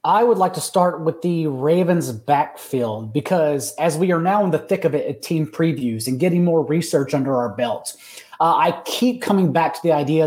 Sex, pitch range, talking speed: male, 145-180 Hz, 215 wpm